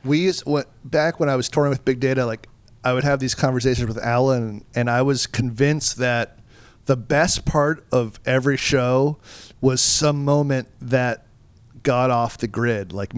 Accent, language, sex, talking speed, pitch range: American, English, male, 175 wpm, 125-155 Hz